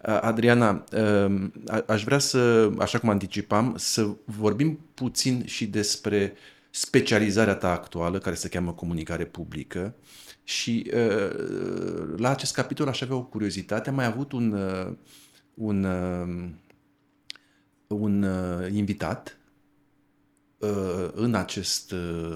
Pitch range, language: 95-115 Hz, Romanian